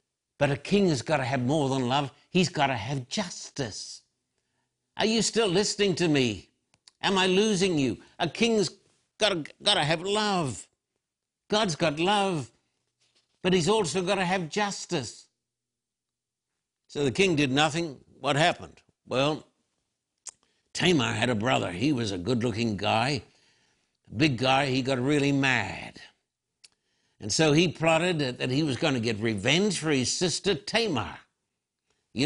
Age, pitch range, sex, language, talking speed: 60-79, 130-175 Hz, male, English, 155 wpm